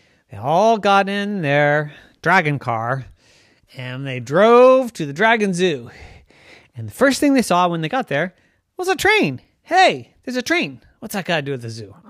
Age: 30-49